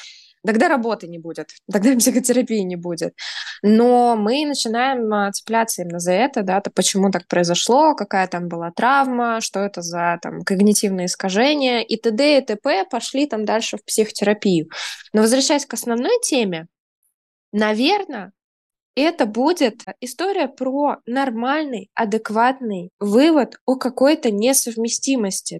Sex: female